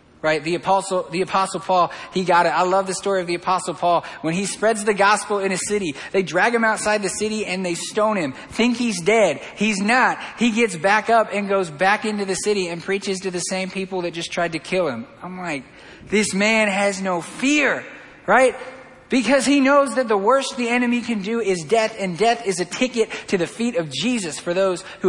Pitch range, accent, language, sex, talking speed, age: 175-210 Hz, American, English, male, 225 wpm, 20-39